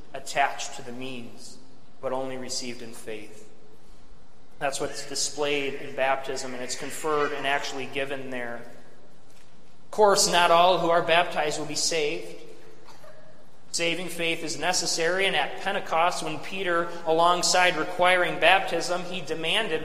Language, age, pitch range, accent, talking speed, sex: English, 30-49, 140-180 Hz, American, 135 wpm, male